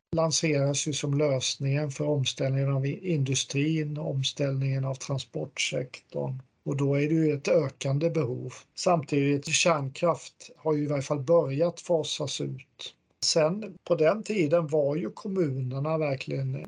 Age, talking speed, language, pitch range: 50-69, 135 wpm, Swedish, 135-155 Hz